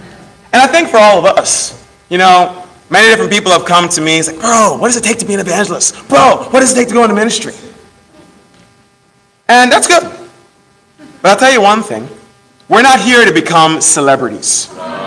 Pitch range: 170-230 Hz